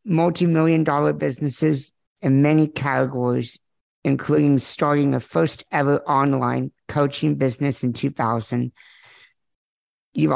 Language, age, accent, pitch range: English, 50-69, American, 130-155 Hz